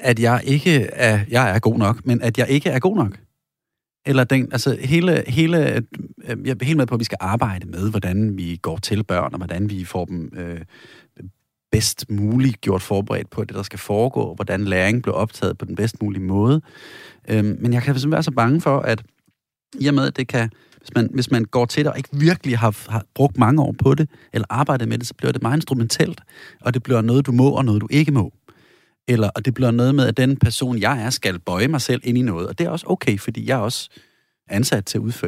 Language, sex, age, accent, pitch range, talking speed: Danish, male, 30-49, native, 110-140 Hz, 245 wpm